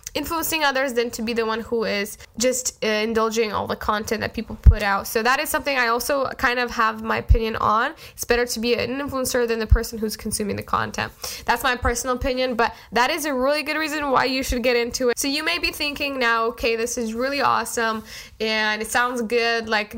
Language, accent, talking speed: English, American, 230 wpm